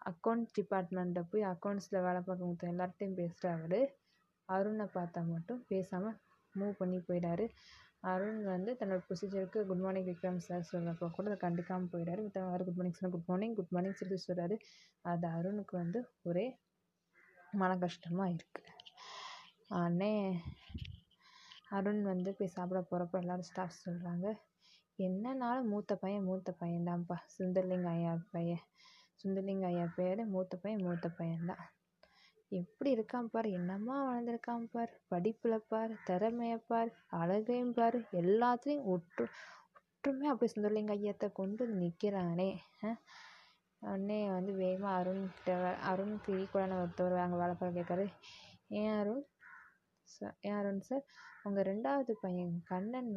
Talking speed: 115 wpm